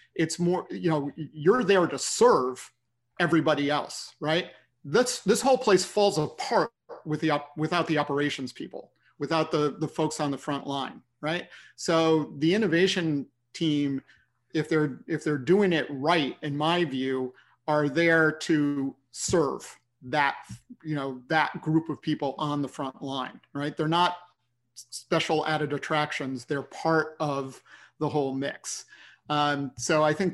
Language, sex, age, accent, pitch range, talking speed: English, male, 40-59, American, 140-165 Hz, 150 wpm